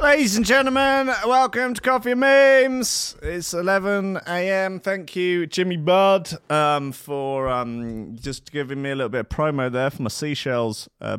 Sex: male